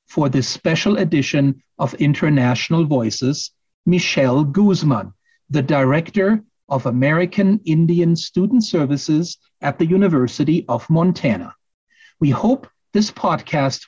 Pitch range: 135-185 Hz